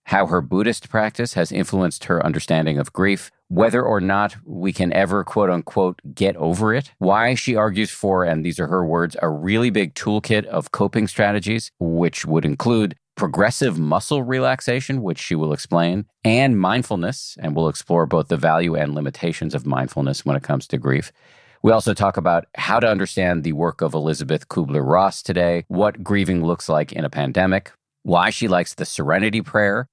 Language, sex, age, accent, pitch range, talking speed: English, male, 40-59, American, 80-110 Hz, 180 wpm